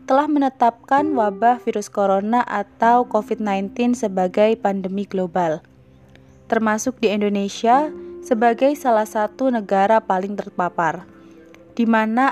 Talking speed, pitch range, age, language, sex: 95 wpm, 200-255 Hz, 20-39, Indonesian, female